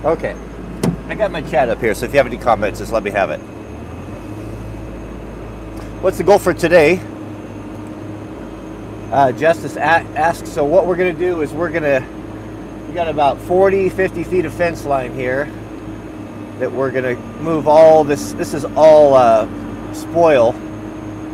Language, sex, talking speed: English, male, 155 wpm